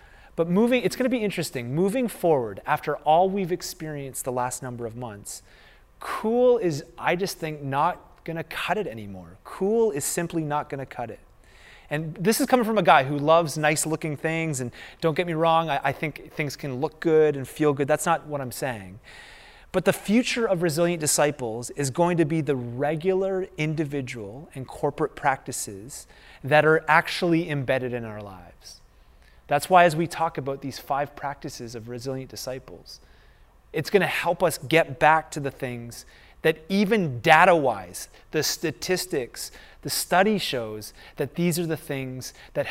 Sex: male